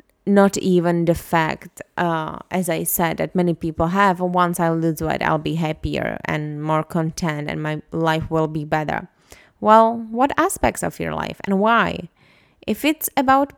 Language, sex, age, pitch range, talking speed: English, female, 20-39, 165-200 Hz, 170 wpm